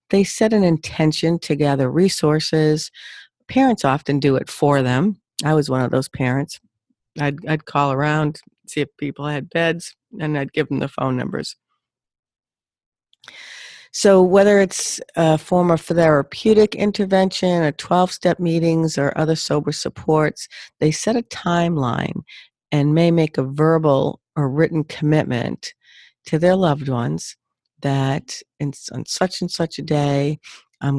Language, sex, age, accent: English, female, 50-69, American